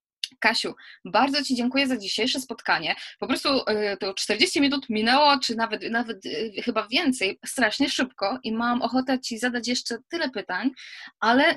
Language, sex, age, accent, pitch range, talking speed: Polish, female, 20-39, native, 210-260 Hz, 150 wpm